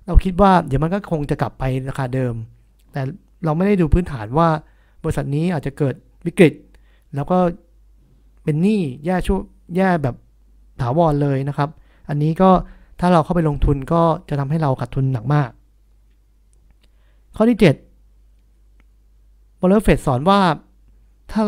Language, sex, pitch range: Thai, male, 130-175 Hz